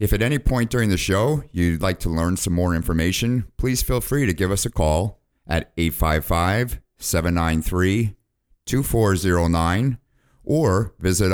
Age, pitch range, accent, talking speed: 50-69, 85-105 Hz, American, 140 wpm